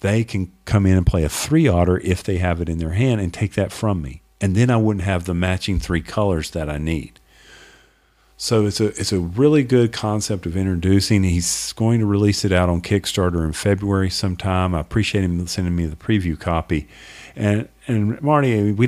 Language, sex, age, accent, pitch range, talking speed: English, male, 50-69, American, 85-105 Hz, 210 wpm